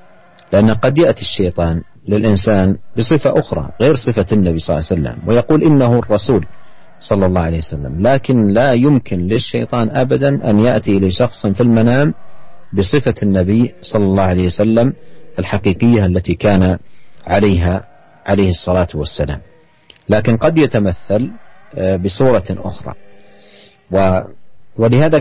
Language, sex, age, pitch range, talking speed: Indonesian, male, 50-69, 95-120 Hz, 120 wpm